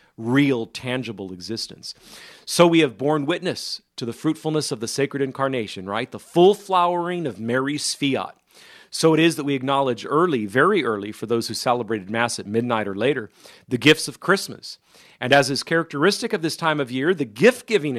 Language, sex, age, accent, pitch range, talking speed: English, male, 40-59, American, 115-160 Hz, 185 wpm